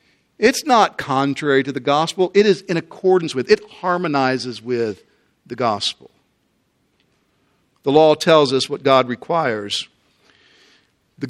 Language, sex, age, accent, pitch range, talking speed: English, male, 50-69, American, 145-200 Hz, 125 wpm